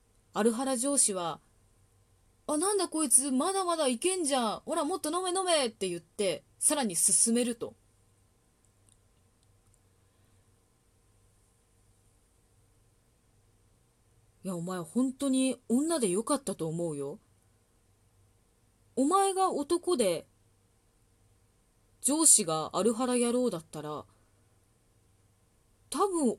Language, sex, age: Japanese, female, 20-39